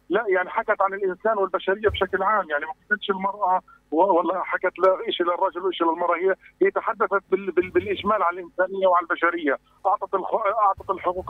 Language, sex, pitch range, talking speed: Arabic, male, 160-195 Hz, 160 wpm